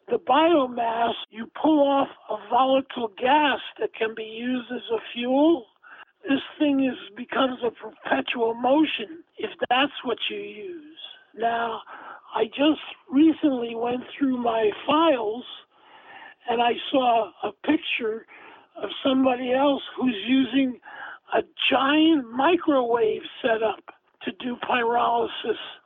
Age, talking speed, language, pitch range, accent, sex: 50-69, 120 wpm, English, 235-315 Hz, American, male